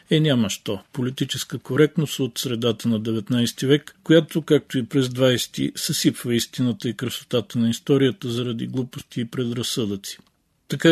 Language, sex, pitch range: Bulgarian, male, 110-140 Hz